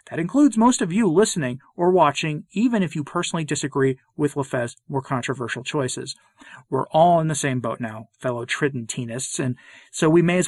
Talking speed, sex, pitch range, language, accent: 185 wpm, male, 125-155 Hz, English, American